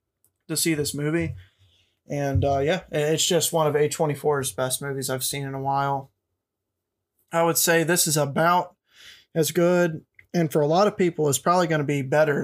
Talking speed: 190 wpm